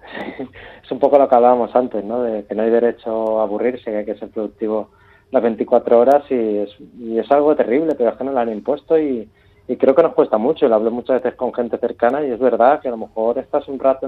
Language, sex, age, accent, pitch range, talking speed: Spanish, male, 20-39, Spanish, 110-130 Hz, 265 wpm